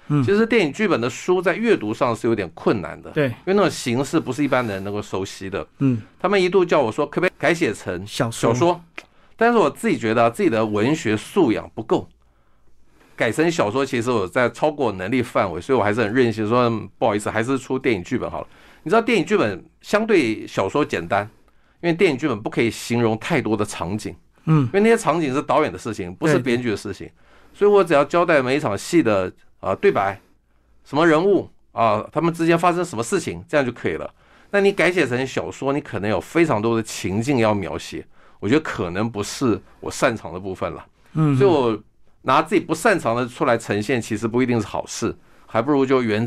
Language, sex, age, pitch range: Chinese, male, 50-69, 110-165 Hz